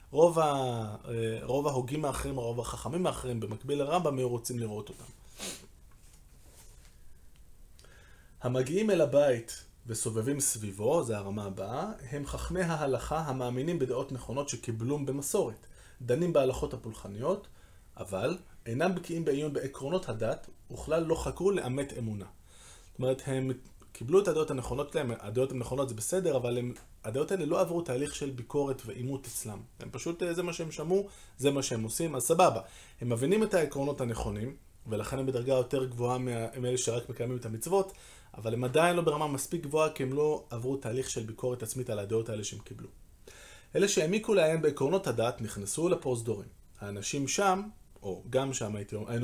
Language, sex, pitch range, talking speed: Hebrew, male, 115-150 Hz, 130 wpm